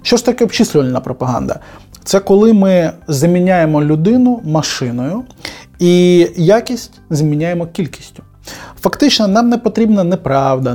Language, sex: Ukrainian, male